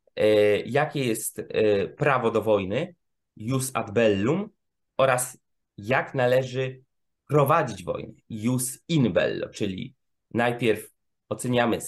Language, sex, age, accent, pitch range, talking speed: Polish, male, 20-39, native, 110-135 Hz, 95 wpm